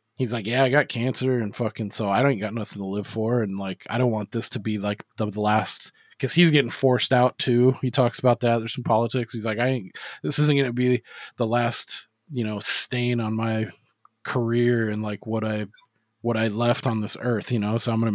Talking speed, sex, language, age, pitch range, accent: 240 wpm, male, English, 20-39, 110-130 Hz, American